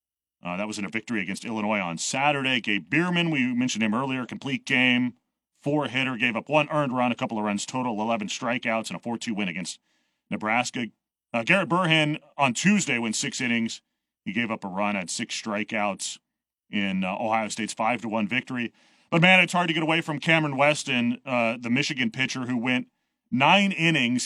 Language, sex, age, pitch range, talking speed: English, male, 30-49, 115-160 Hz, 190 wpm